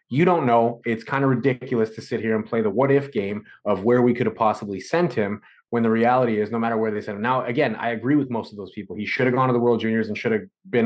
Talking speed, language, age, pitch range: 305 wpm, English, 30-49, 110-130 Hz